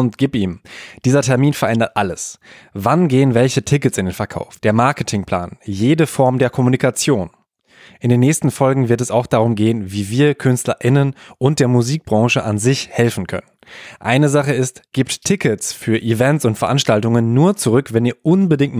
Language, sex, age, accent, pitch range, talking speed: German, male, 10-29, German, 110-130 Hz, 170 wpm